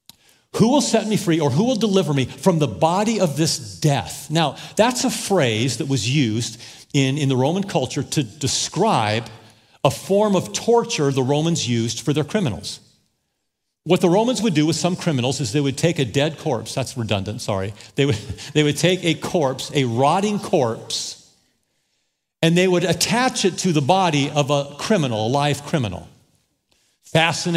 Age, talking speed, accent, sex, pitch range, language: 50-69, 180 wpm, American, male, 125-175 Hz, English